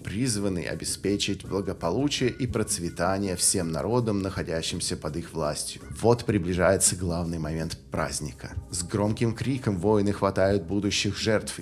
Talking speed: 120 wpm